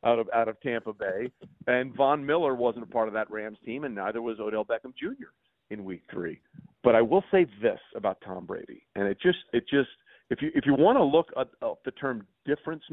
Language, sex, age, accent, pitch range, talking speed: English, male, 40-59, American, 110-150 Hz, 230 wpm